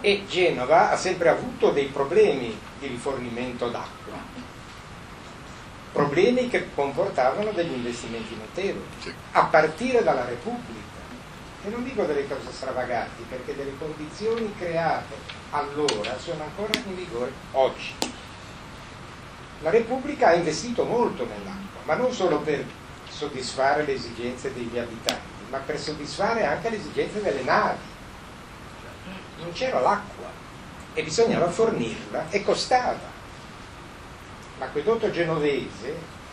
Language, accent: Italian, native